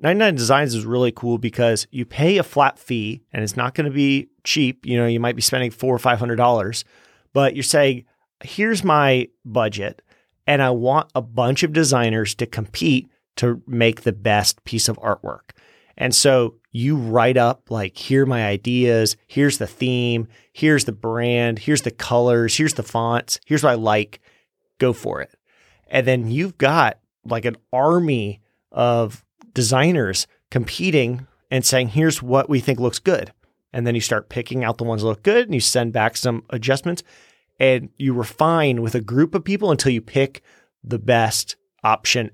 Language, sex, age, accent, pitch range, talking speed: English, male, 30-49, American, 115-140 Hz, 185 wpm